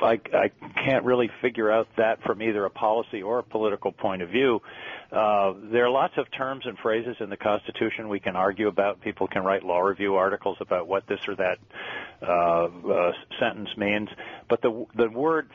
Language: English